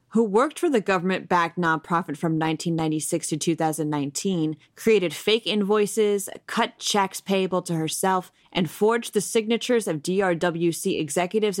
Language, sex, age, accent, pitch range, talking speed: English, female, 30-49, American, 165-215 Hz, 130 wpm